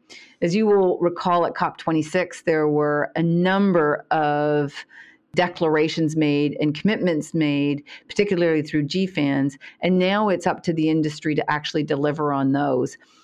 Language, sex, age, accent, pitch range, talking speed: English, female, 40-59, American, 150-170 Hz, 140 wpm